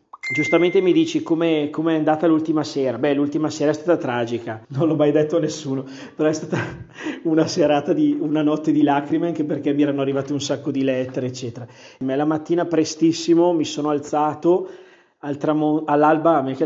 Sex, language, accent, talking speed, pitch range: male, Italian, native, 190 wpm, 140-170 Hz